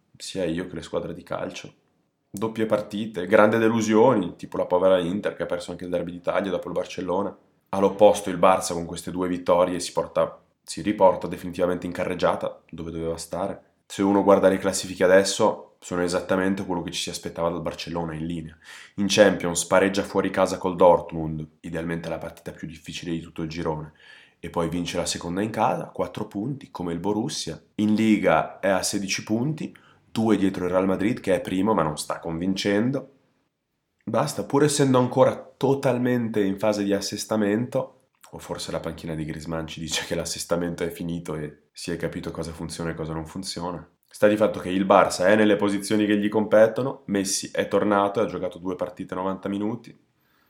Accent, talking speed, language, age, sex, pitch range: native, 185 wpm, Italian, 20-39, male, 85-105 Hz